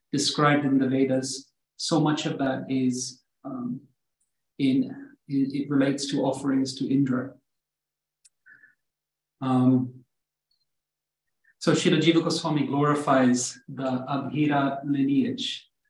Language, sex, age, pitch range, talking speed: English, male, 40-59, 135-155 Hz, 100 wpm